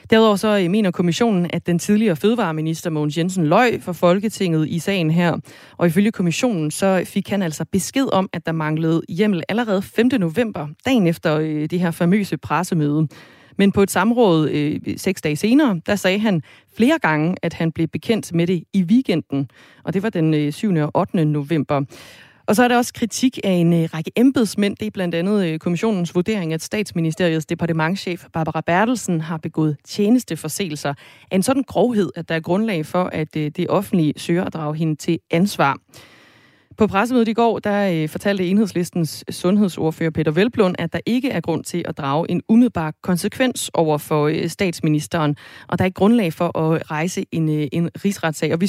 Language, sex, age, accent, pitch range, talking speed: Danish, female, 30-49, native, 160-200 Hz, 180 wpm